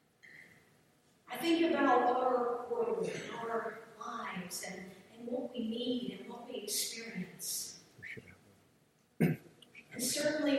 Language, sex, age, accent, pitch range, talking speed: English, female, 40-59, American, 250-305 Hz, 110 wpm